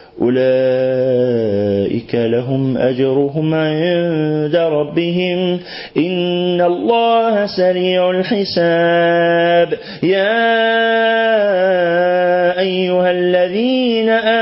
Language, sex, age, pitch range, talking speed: Arabic, male, 40-59, 145-185 Hz, 50 wpm